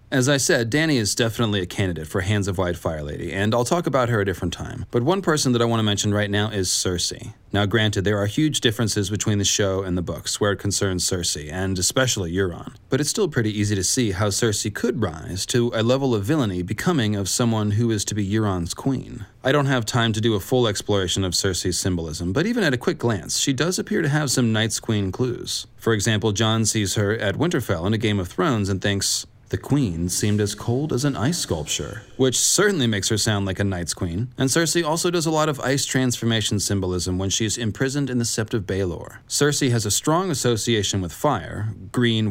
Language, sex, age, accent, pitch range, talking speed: English, male, 30-49, American, 100-125 Hz, 230 wpm